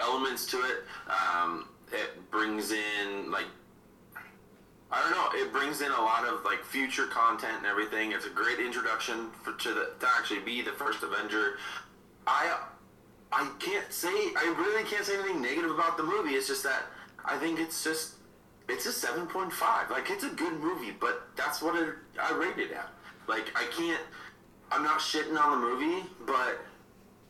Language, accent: English, American